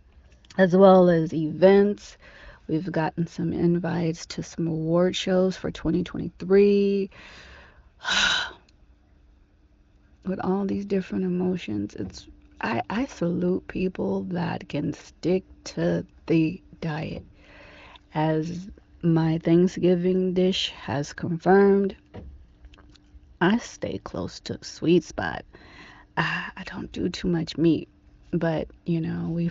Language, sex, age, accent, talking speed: English, female, 30-49, American, 110 wpm